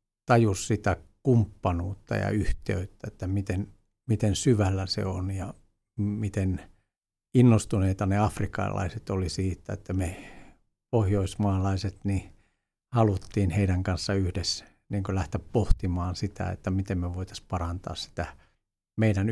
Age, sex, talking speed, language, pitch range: 60-79, male, 115 wpm, Finnish, 95-110 Hz